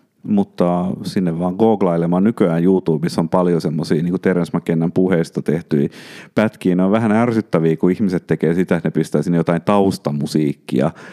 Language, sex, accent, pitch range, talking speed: Finnish, male, native, 85-105 Hz, 150 wpm